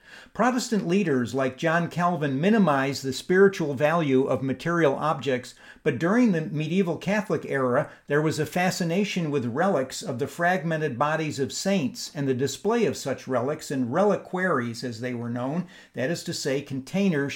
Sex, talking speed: male, 165 wpm